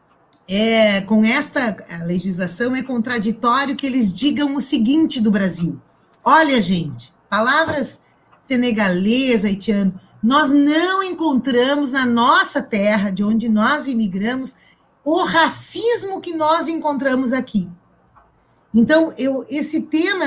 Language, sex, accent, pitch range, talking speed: Portuguese, female, Brazilian, 220-285 Hz, 115 wpm